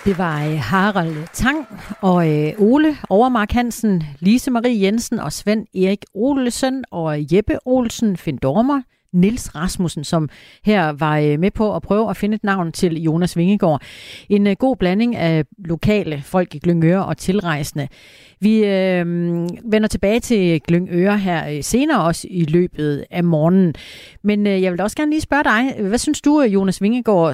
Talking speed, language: 160 wpm, Danish